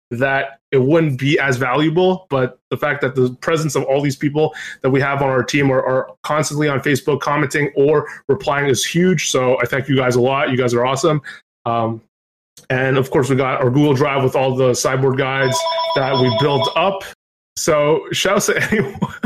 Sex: male